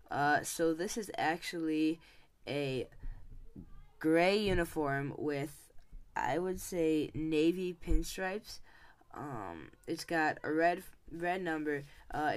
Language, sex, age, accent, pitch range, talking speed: English, female, 10-29, American, 140-170 Hz, 105 wpm